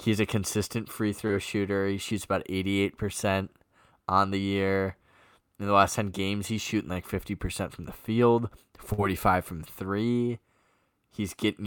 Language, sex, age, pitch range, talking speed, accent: English, male, 10-29, 100-125 Hz, 150 wpm, American